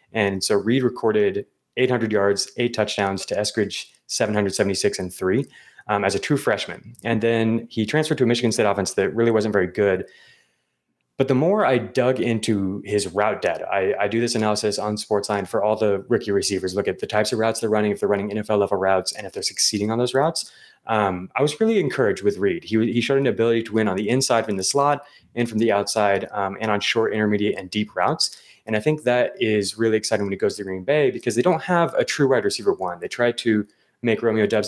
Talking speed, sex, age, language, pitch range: 235 wpm, male, 20-39, English, 105-125 Hz